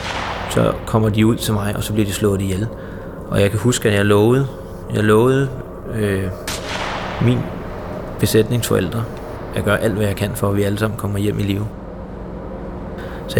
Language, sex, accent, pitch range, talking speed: Danish, male, native, 95-115 Hz, 180 wpm